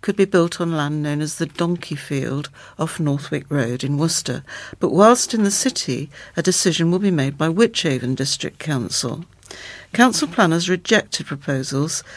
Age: 60-79